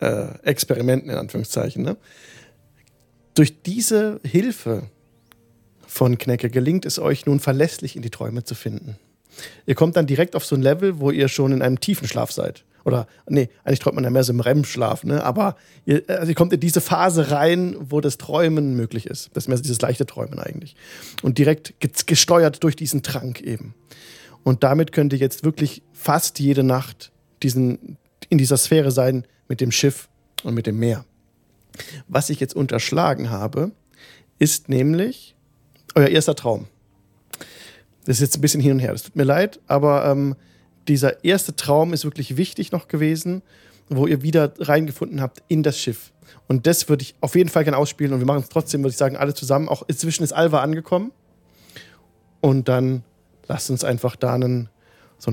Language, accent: German, German